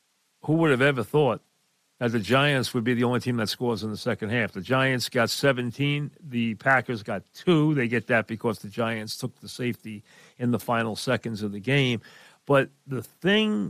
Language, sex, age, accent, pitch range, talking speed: English, male, 50-69, American, 120-145 Hz, 200 wpm